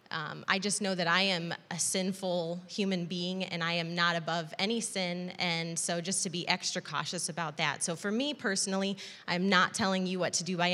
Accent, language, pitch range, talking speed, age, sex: American, English, 170-200 Hz, 220 wpm, 20-39, female